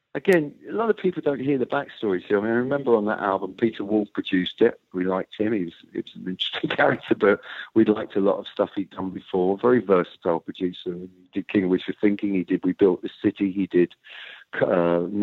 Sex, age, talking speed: male, 50-69, 230 wpm